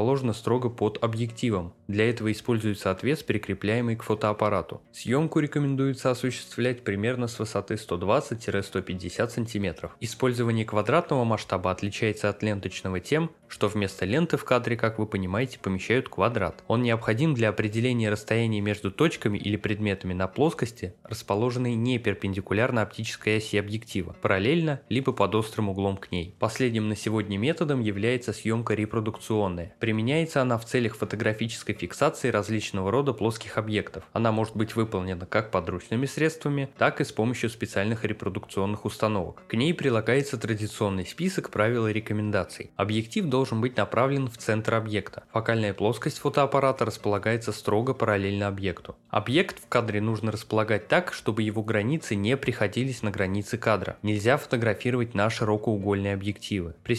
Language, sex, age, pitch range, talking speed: Russian, male, 20-39, 105-120 Hz, 140 wpm